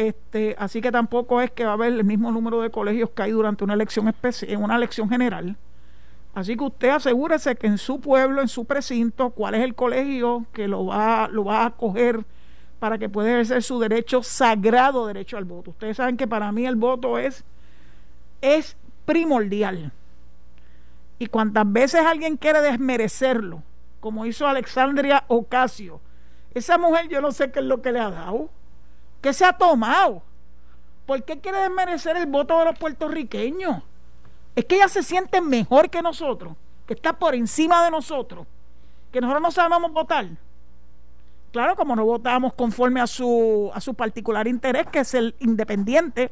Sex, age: male, 50-69